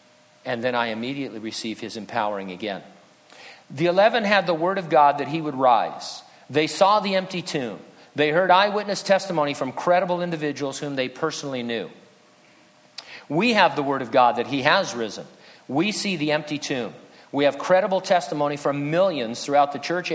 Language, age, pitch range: English, 50-69, 125-185 Hz